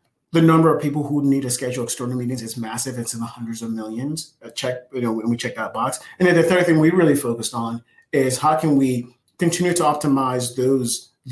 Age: 30-49